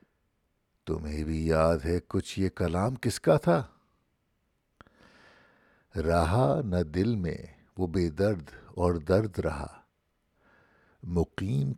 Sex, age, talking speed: male, 60-79, 105 wpm